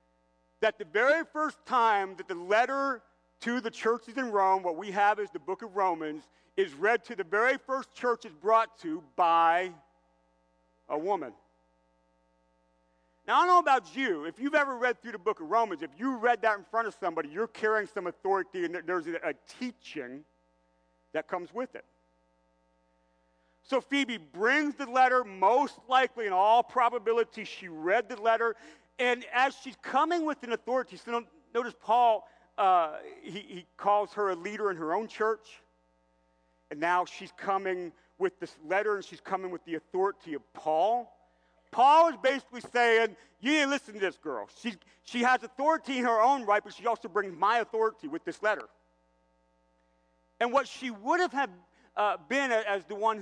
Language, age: English, 40-59